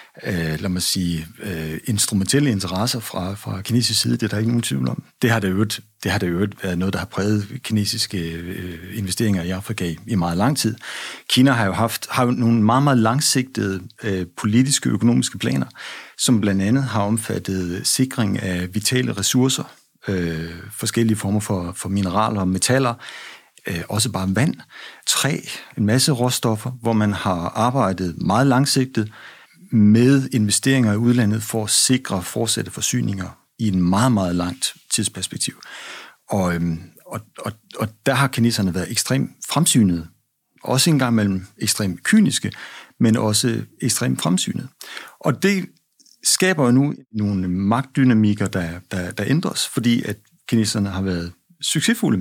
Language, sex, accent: Danish, male, native